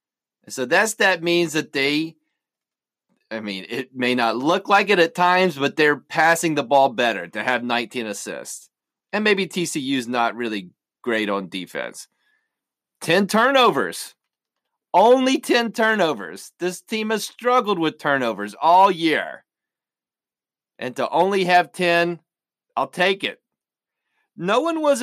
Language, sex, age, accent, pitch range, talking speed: English, male, 30-49, American, 140-200 Hz, 140 wpm